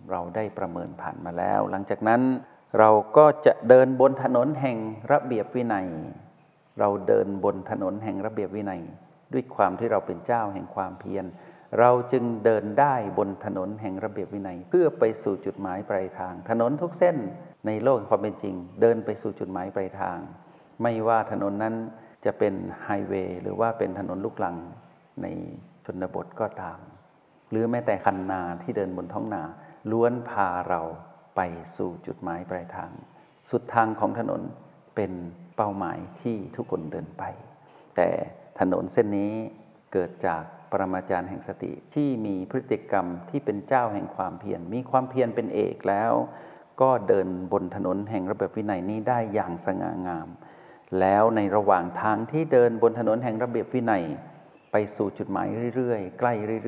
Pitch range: 95-120 Hz